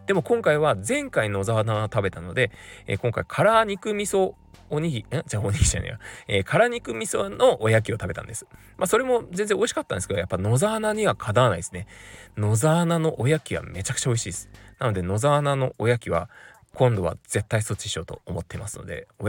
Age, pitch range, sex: 20-39, 95-135 Hz, male